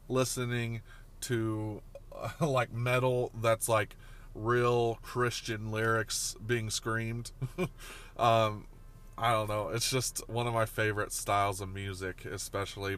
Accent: American